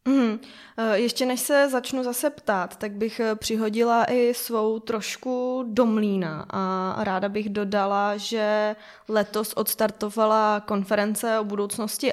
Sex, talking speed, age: female, 115 wpm, 20-39